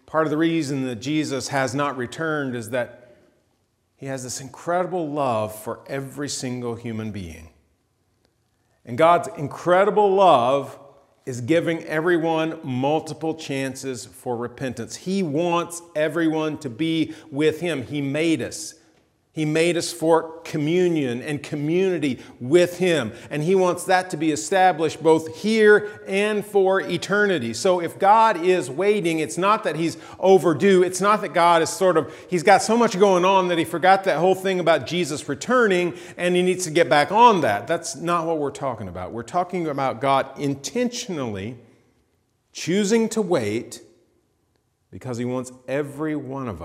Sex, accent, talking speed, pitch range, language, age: male, American, 160 wpm, 125-175 Hz, English, 40-59